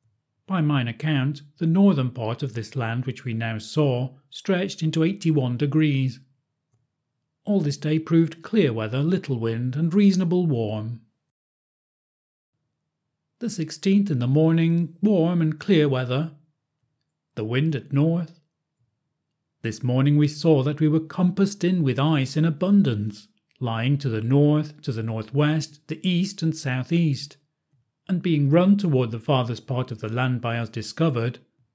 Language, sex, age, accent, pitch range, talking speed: English, male, 40-59, British, 125-160 Hz, 150 wpm